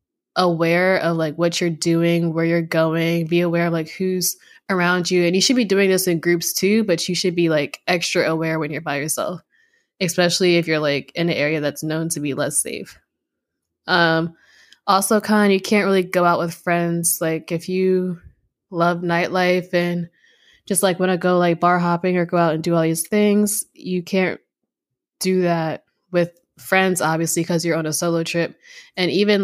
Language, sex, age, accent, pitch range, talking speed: English, female, 10-29, American, 165-185 Hz, 200 wpm